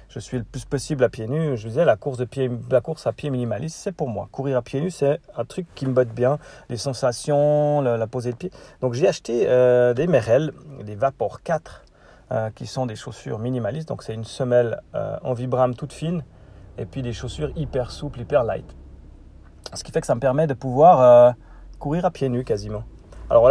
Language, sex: French, male